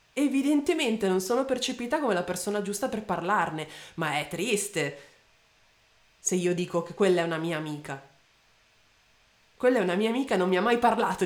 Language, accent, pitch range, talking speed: Italian, native, 155-190 Hz, 175 wpm